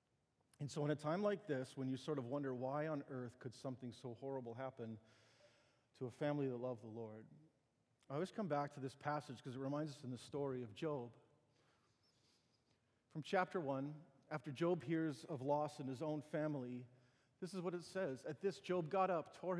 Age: 40-59